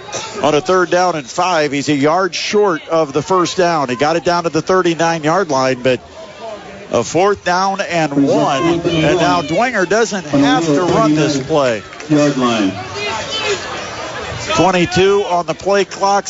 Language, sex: English, male